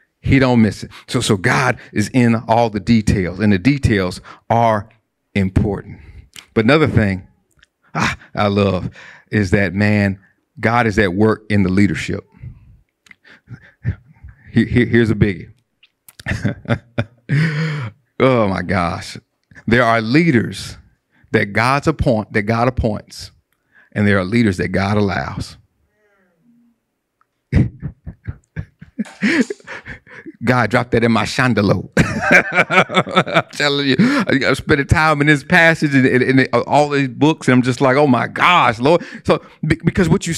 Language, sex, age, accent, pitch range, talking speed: English, male, 50-69, American, 105-145 Hz, 130 wpm